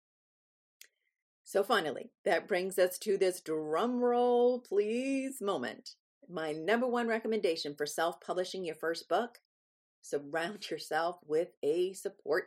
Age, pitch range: 40-59, 155-225 Hz